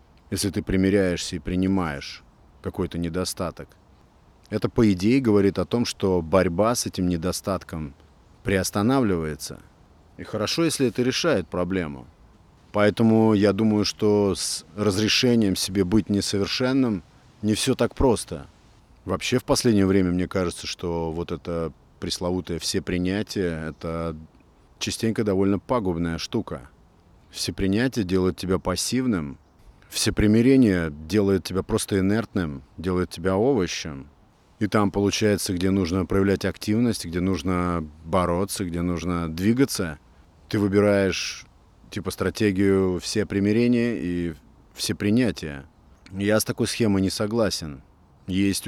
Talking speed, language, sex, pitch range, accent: 120 wpm, Russian, male, 85-105 Hz, native